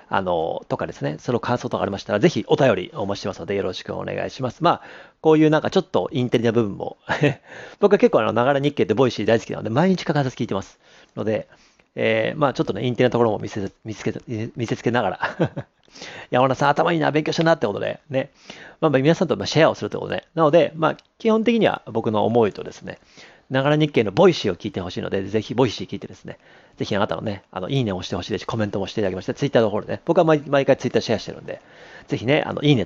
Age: 40-59